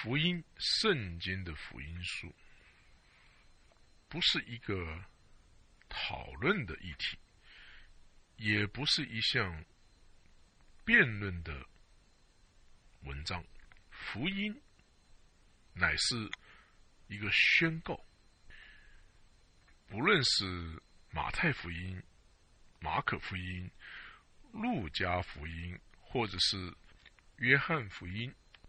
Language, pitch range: English, 85-130 Hz